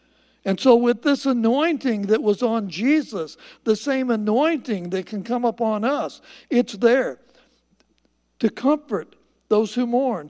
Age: 60-79